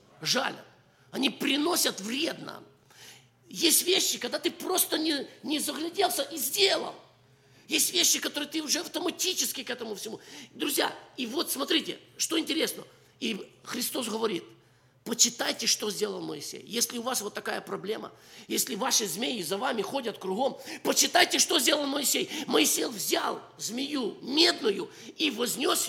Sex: male